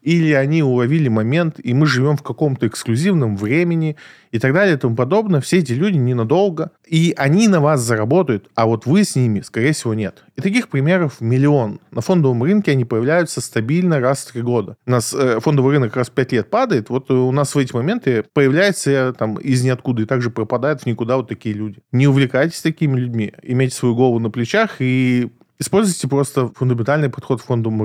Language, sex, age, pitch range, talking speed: Russian, male, 20-39, 115-155 Hz, 200 wpm